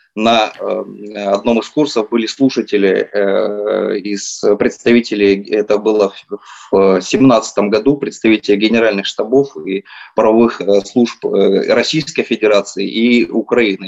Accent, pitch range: native, 105-130 Hz